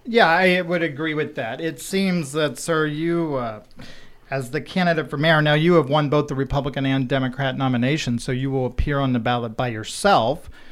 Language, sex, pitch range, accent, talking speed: English, male, 130-155 Hz, American, 200 wpm